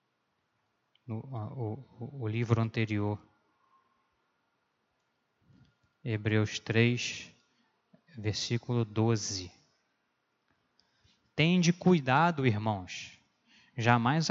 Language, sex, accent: Portuguese, male, Brazilian